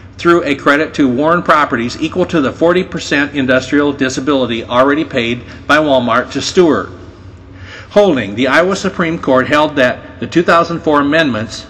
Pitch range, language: 125-160 Hz, English